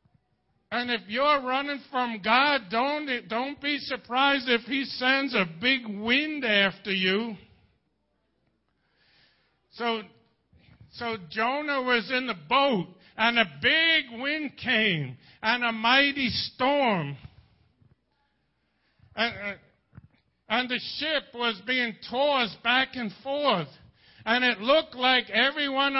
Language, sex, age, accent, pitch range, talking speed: English, male, 60-79, American, 225-275 Hz, 115 wpm